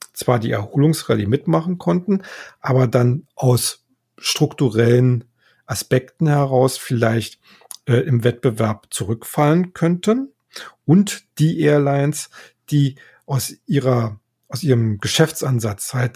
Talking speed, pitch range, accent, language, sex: 100 wpm, 120-150 Hz, German, German, male